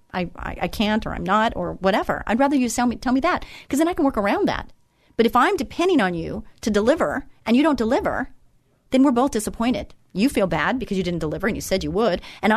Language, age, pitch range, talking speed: English, 40-59, 205-275 Hz, 250 wpm